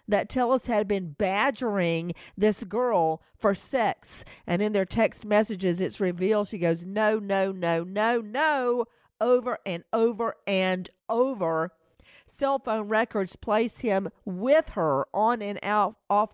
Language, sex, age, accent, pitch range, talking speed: English, female, 40-59, American, 185-235 Hz, 140 wpm